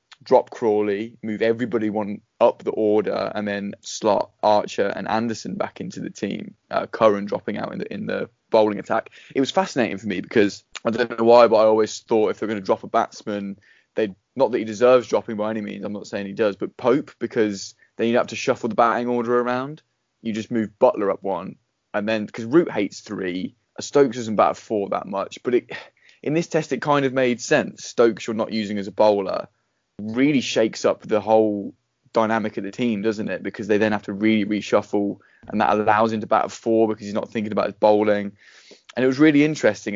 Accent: British